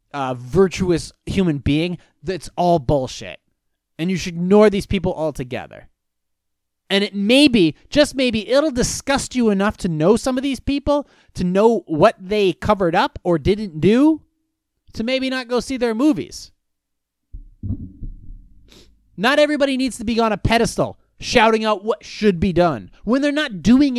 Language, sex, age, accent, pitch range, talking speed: English, male, 30-49, American, 175-260 Hz, 160 wpm